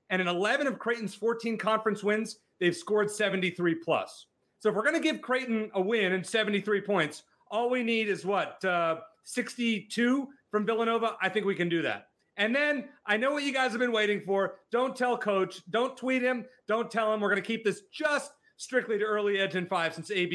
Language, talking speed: English, 210 wpm